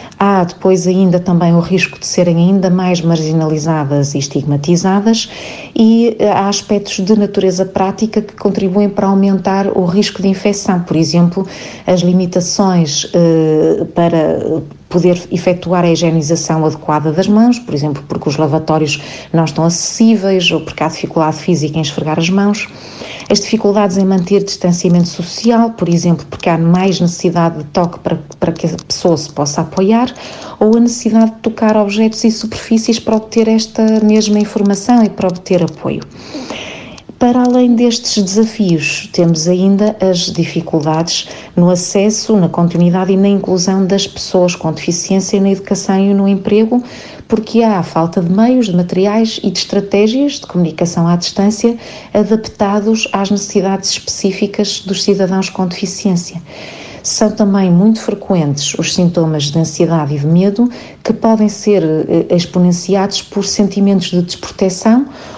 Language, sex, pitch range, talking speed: Portuguese, female, 170-210 Hz, 150 wpm